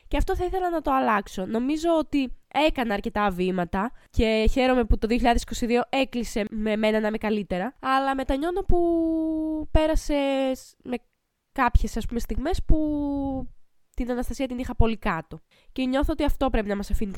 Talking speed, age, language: 155 wpm, 20-39, Greek